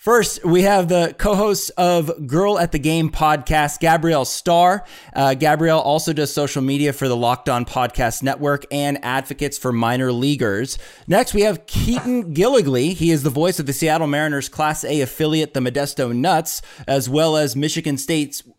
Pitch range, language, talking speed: 135-165 Hz, English, 175 wpm